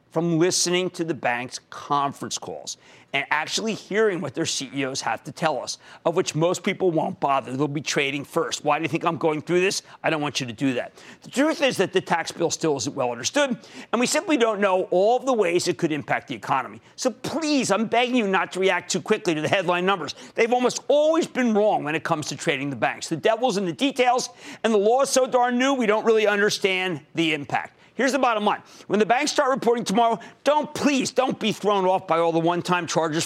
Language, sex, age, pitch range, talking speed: English, male, 50-69, 165-245 Hz, 235 wpm